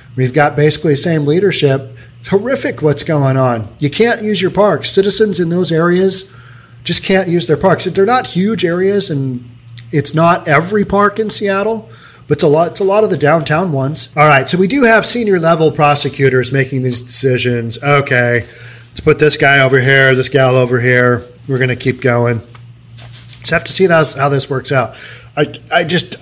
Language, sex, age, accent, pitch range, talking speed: English, male, 40-59, American, 125-170 Hz, 195 wpm